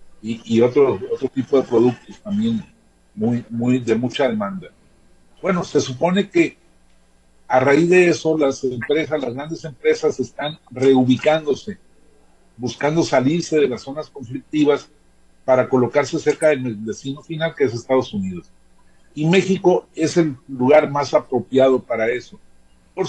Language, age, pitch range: Spanish, 50-69, 120-165 Hz